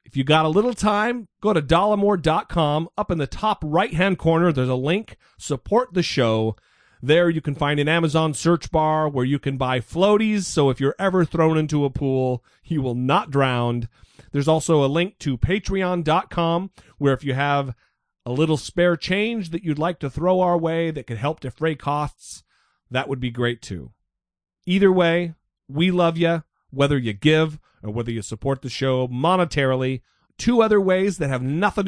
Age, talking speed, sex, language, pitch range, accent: 40-59, 185 wpm, male, English, 130-175 Hz, American